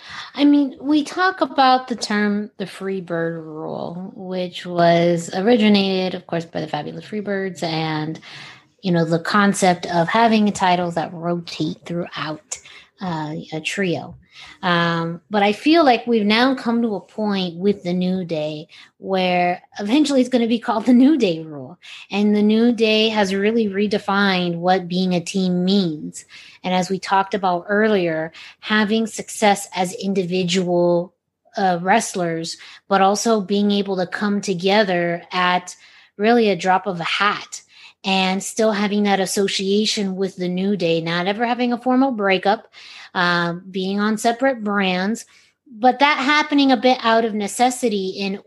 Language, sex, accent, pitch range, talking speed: English, female, American, 175-220 Hz, 160 wpm